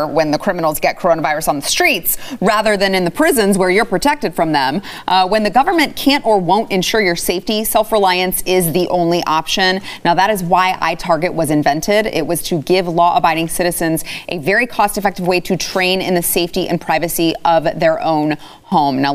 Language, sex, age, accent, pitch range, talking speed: English, female, 30-49, American, 165-205 Hz, 190 wpm